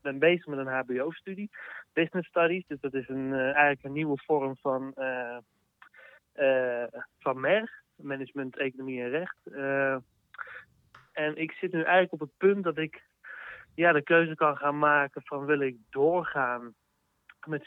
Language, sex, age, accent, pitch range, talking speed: Dutch, male, 30-49, Dutch, 130-170 Hz, 165 wpm